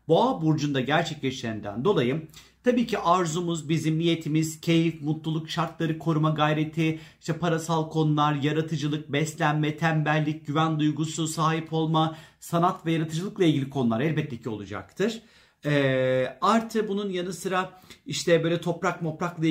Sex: male